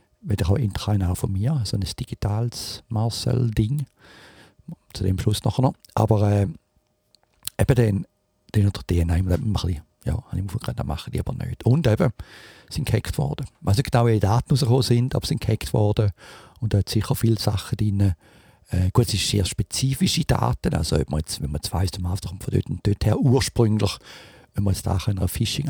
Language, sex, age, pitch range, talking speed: English, male, 50-69, 95-115 Hz, 180 wpm